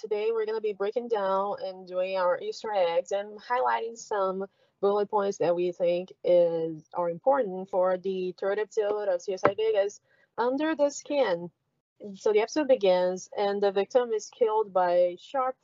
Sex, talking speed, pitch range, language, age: female, 170 wpm, 185-265 Hz, English, 20-39